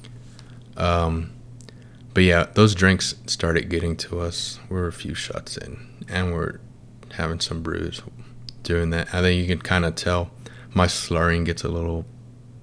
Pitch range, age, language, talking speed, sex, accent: 90-120 Hz, 20-39, English, 160 wpm, male, American